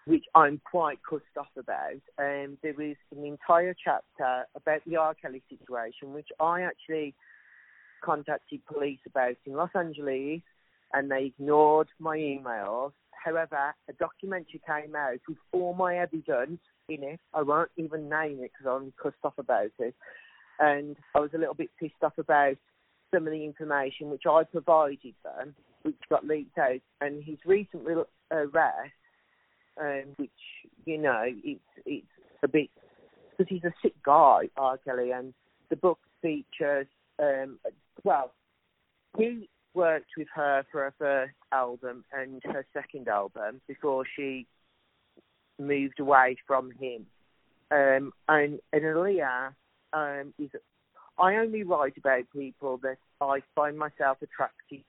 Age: 40-59